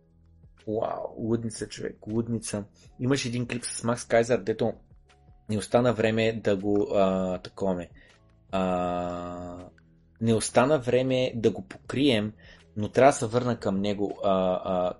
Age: 30-49